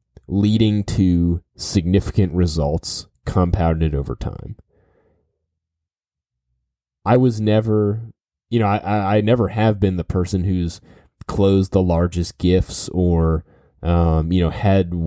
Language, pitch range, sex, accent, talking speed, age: English, 80-100 Hz, male, American, 115 wpm, 30-49